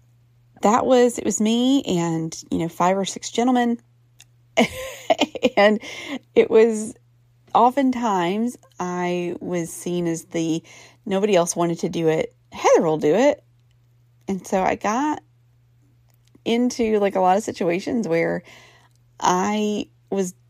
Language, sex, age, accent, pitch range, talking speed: English, female, 30-49, American, 125-200 Hz, 130 wpm